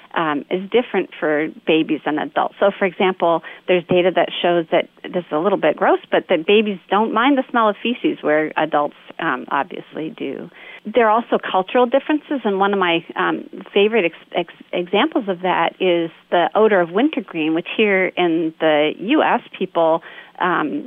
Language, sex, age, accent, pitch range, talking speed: English, female, 40-59, American, 170-230 Hz, 175 wpm